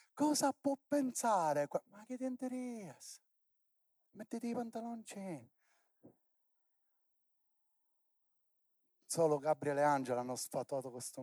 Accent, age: native, 30-49